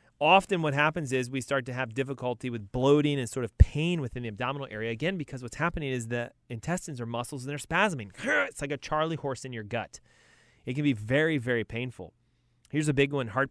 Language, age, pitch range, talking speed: English, 30-49, 115-150 Hz, 220 wpm